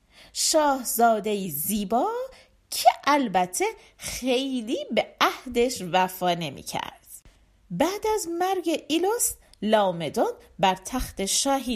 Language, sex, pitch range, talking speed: Persian, female, 195-305 Hz, 85 wpm